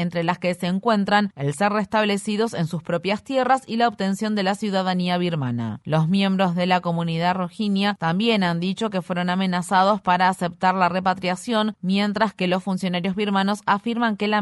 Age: 30-49